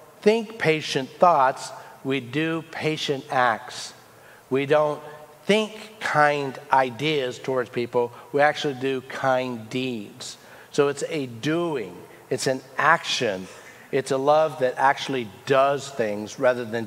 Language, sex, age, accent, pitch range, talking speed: English, male, 50-69, American, 125-155 Hz, 125 wpm